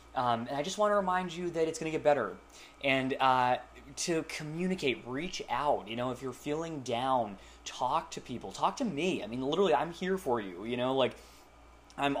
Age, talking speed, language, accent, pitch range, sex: 20-39, 210 wpm, English, American, 115-155 Hz, male